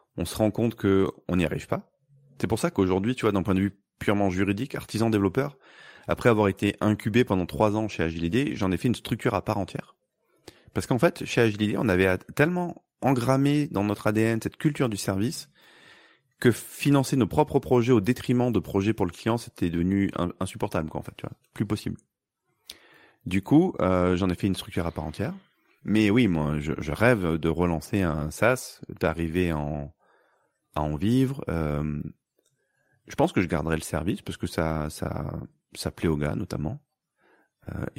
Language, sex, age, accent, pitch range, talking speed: French, male, 30-49, French, 85-115 Hz, 190 wpm